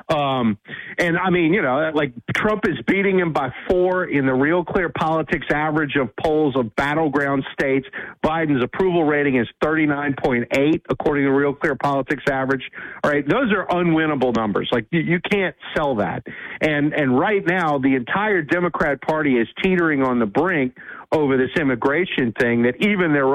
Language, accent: English, American